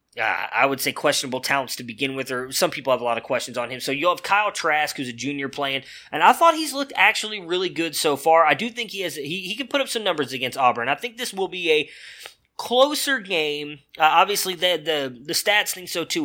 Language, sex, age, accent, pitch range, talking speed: English, male, 20-39, American, 135-170 Hz, 255 wpm